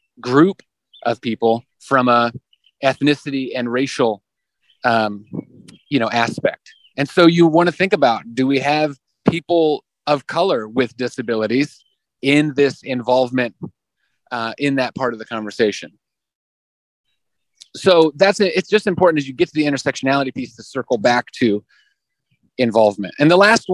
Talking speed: 145 wpm